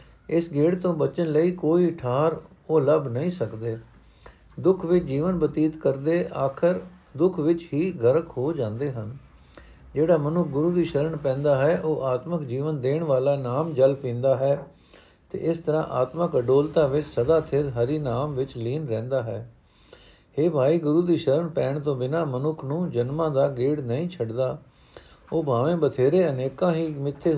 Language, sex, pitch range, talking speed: Punjabi, male, 125-160 Hz, 165 wpm